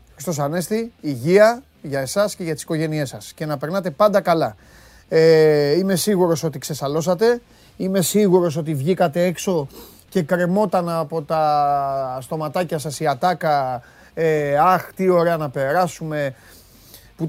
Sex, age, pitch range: male, 30-49, 130-190 Hz